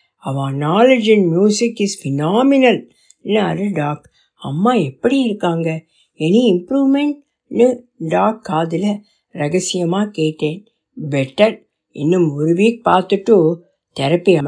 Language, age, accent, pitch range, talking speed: Tamil, 60-79, native, 170-245 Hz, 95 wpm